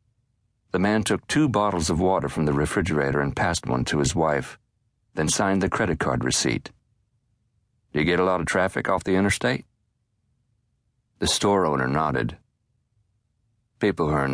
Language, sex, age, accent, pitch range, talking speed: English, male, 50-69, American, 80-115 Hz, 165 wpm